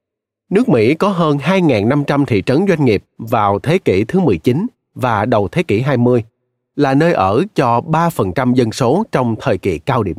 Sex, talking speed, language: male, 185 wpm, Vietnamese